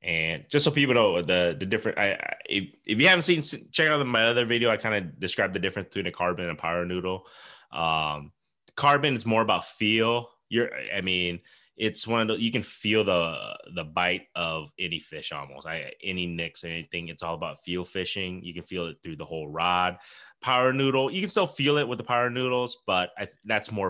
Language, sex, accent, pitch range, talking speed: English, male, American, 90-125 Hz, 220 wpm